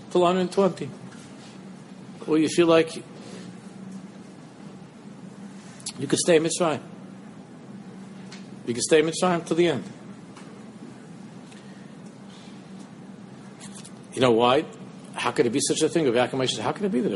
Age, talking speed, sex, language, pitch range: 50-69, 130 wpm, male, English, 130-195 Hz